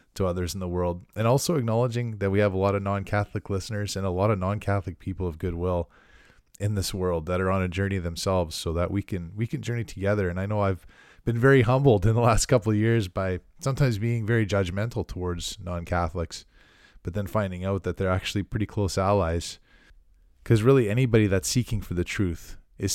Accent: American